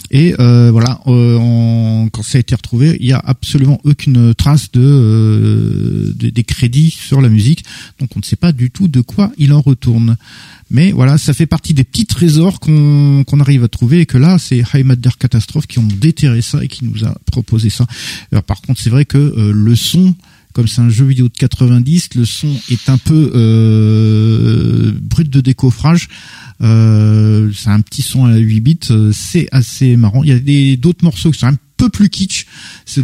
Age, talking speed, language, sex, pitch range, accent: 50-69, 205 wpm, French, male, 115-155 Hz, French